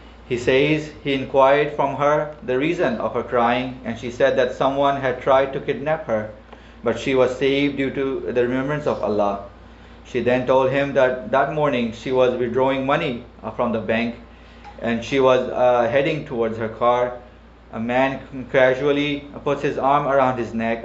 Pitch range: 115-135 Hz